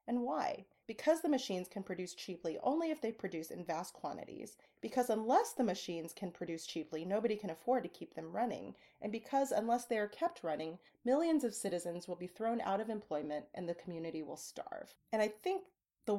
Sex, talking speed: female, 200 wpm